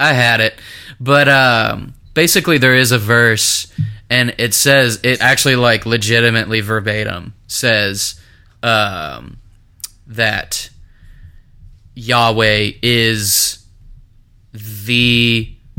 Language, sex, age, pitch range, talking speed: English, male, 20-39, 105-125 Hz, 90 wpm